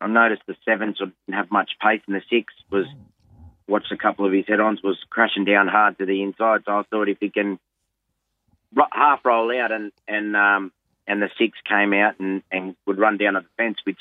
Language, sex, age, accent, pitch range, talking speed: English, male, 30-49, Australian, 95-110 Hz, 230 wpm